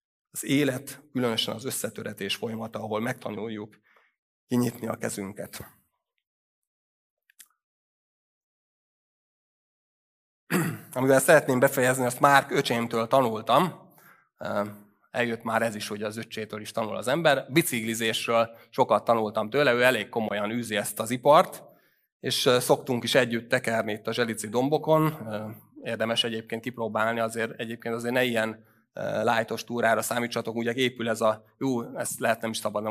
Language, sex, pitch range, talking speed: Hungarian, male, 110-135 Hz, 130 wpm